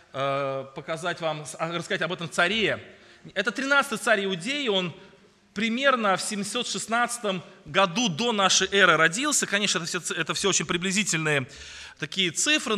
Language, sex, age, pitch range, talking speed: Russian, male, 20-39, 185-235 Hz, 125 wpm